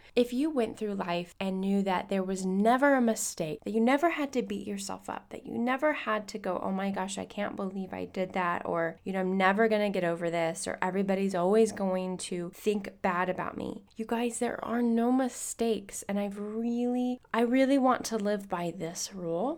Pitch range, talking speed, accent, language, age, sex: 195-240 Hz, 220 wpm, American, English, 10-29, female